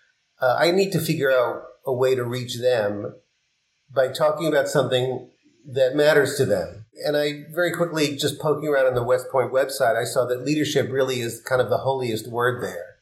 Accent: American